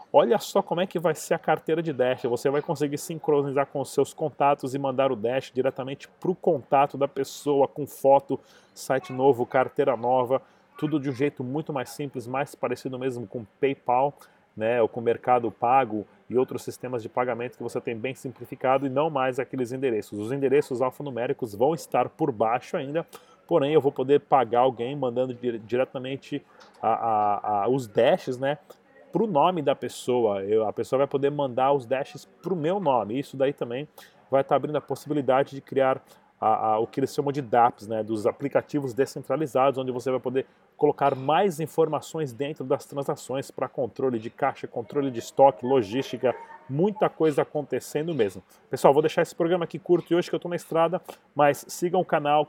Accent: Brazilian